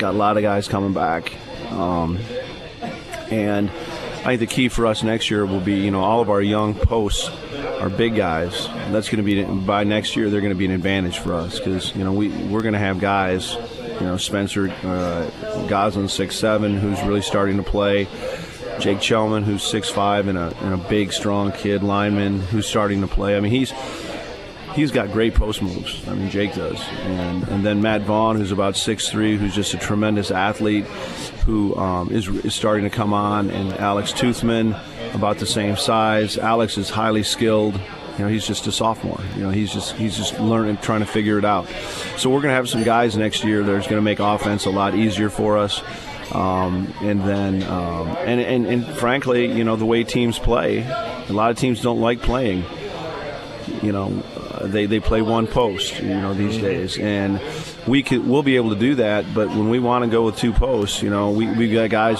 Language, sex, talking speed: English, male, 210 wpm